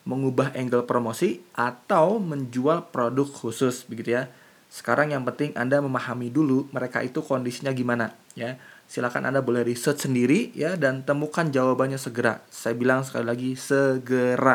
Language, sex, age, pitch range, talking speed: Indonesian, male, 20-39, 120-155 Hz, 145 wpm